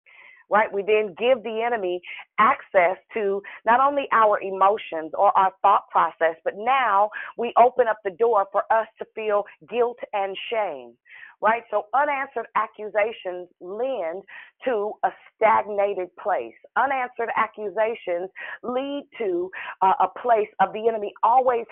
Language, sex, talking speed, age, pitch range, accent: English, female, 135 wpm, 40-59, 195-235 Hz, American